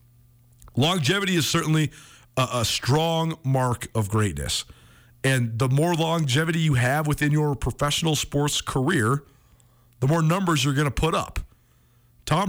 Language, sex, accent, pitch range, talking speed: English, male, American, 120-160 Hz, 140 wpm